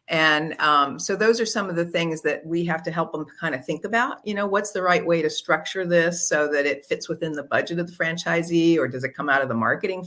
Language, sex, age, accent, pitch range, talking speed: English, female, 50-69, American, 155-205 Hz, 275 wpm